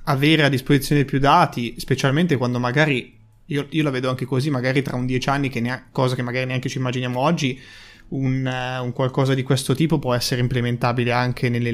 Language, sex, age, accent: Italian, male, 20-39, native